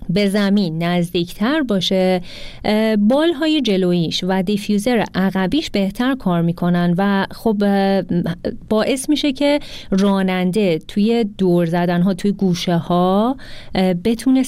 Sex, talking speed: female, 105 wpm